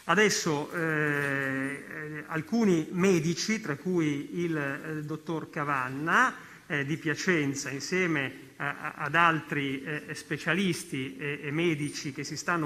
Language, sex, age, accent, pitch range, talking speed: Italian, male, 40-59, native, 150-185 Hz, 115 wpm